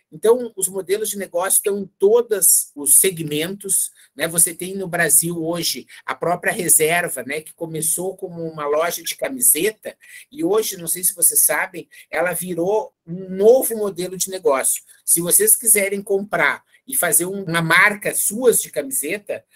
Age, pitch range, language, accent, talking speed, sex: 50-69, 165-210 Hz, Portuguese, Brazilian, 160 wpm, male